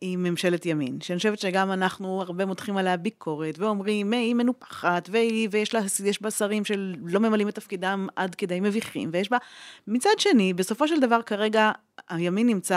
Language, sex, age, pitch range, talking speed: Hebrew, female, 30-49, 170-210 Hz, 170 wpm